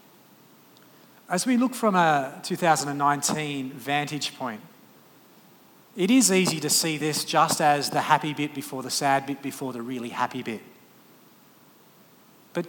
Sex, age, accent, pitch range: male, 40-59, Australian, 135-175 Hz